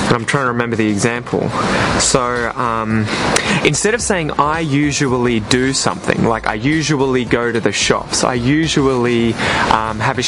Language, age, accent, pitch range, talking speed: English, 20-39, Australian, 120-150 Hz, 160 wpm